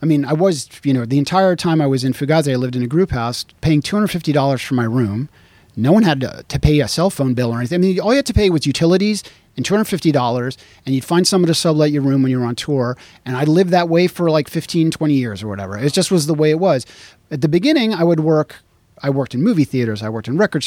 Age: 30-49